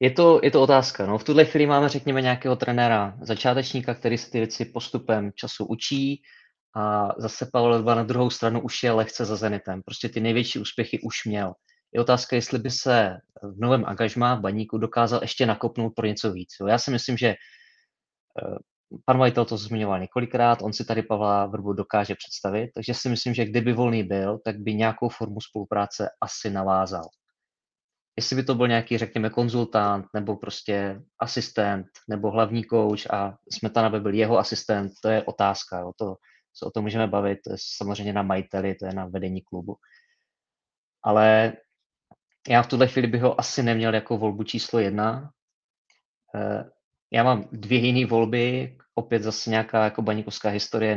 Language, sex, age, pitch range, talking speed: Czech, male, 20-39, 105-120 Hz, 175 wpm